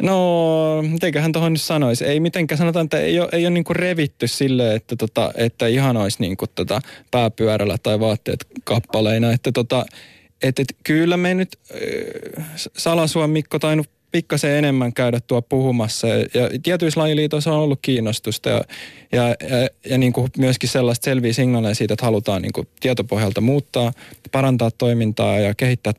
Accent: native